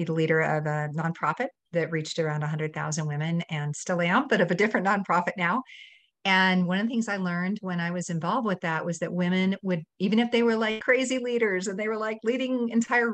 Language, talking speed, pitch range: English, 225 wpm, 175-225 Hz